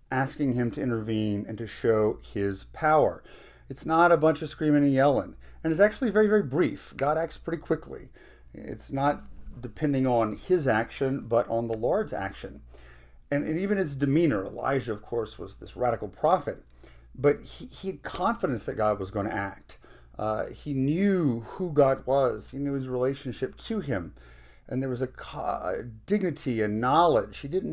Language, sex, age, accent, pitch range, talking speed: English, male, 40-59, American, 110-150 Hz, 180 wpm